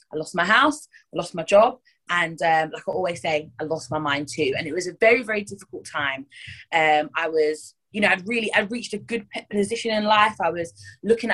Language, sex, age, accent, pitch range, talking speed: English, female, 20-39, British, 160-220 Hz, 235 wpm